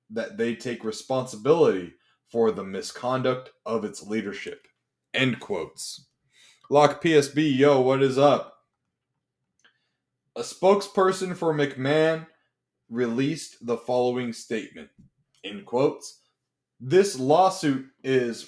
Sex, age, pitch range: male, 20-39, 120-170 Hz